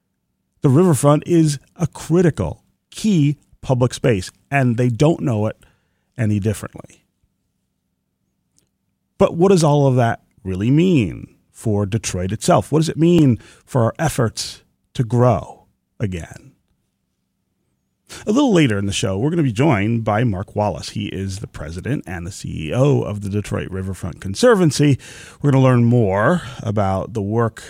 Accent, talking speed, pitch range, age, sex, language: American, 150 wpm, 105-135 Hz, 30-49, male, English